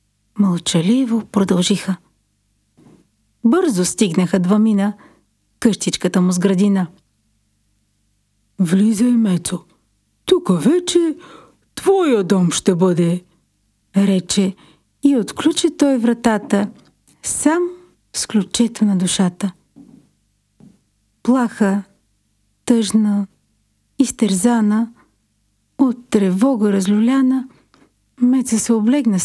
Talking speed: 75 wpm